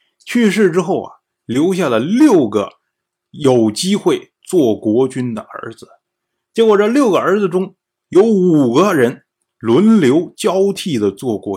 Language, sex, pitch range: Chinese, male, 130-215 Hz